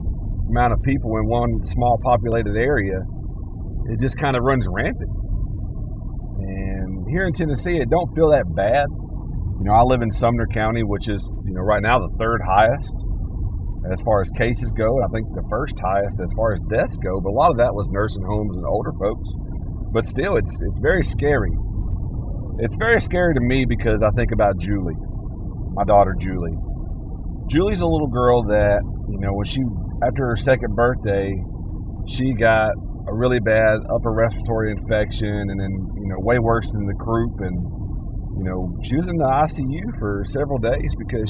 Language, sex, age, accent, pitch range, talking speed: English, male, 40-59, American, 100-115 Hz, 185 wpm